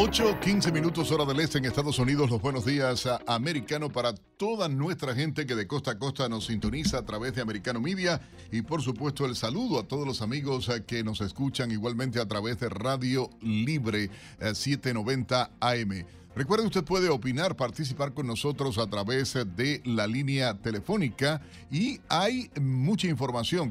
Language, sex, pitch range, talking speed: Spanish, male, 115-145 Hz, 165 wpm